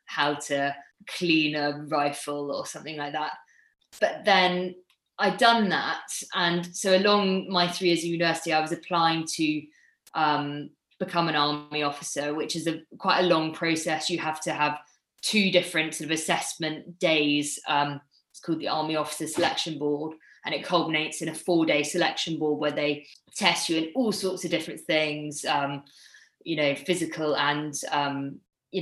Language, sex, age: English, female, 20-39